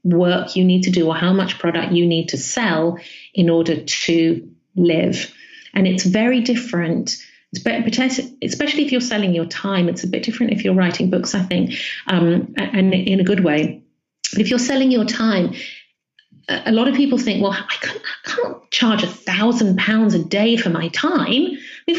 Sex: female